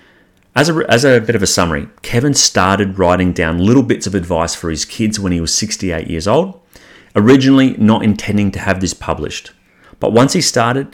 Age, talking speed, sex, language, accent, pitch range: 30-49, 190 wpm, male, English, Australian, 90-110 Hz